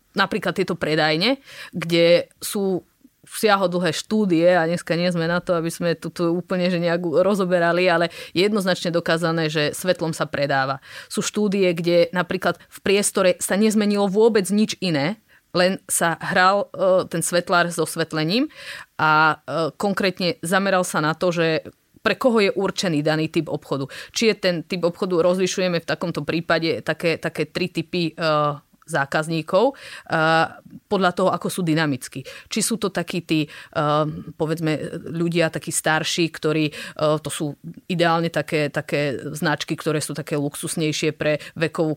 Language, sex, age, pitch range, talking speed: Slovak, female, 30-49, 155-185 Hz, 145 wpm